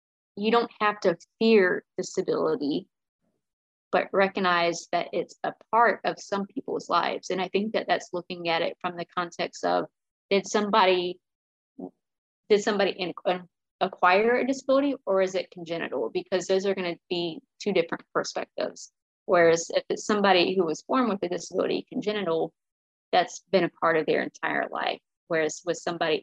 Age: 20-39